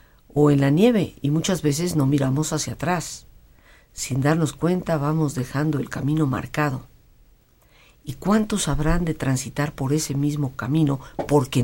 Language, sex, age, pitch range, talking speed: Spanish, female, 50-69, 130-165 Hz, 150 wpm